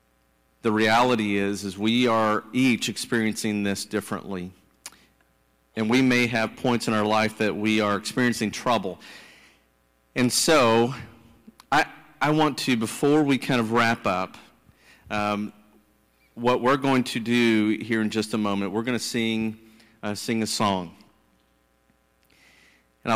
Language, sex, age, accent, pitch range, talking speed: English, male, 40-59, American, 100-125 Hz, 145 wpm